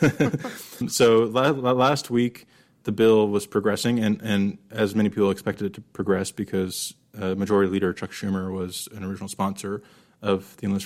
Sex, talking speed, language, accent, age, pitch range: male, 170 wpm, English, American, 20-39, 95-110 Hz